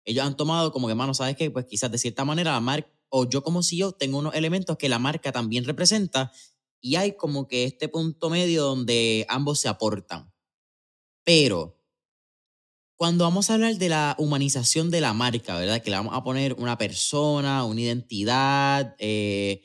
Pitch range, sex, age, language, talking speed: 120-165 Hz, male, 20-39, Spanish, 185 wpm